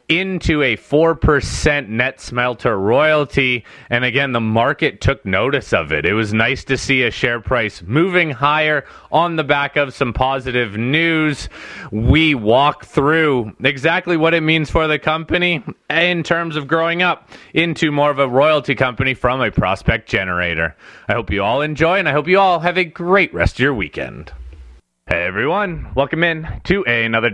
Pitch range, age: 120-155 Hz, 30-49